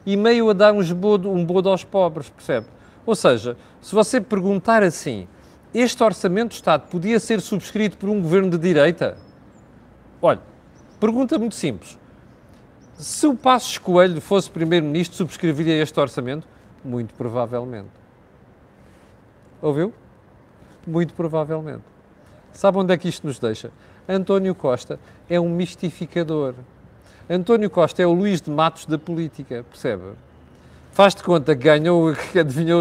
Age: 40-59